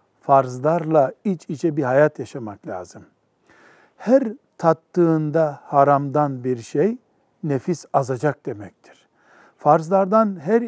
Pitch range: 145-185 Hz